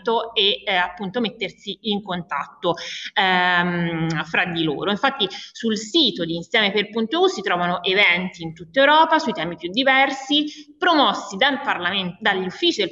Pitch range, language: 180-250 Hz, Italian